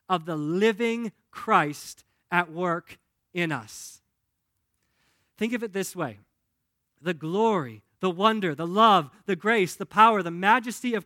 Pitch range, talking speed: 155-215 Hz, 140 wpm